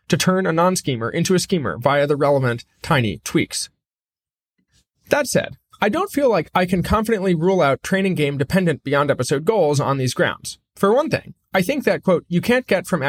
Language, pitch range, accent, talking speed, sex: English, 145-190 Hz, American, 195 wpm, male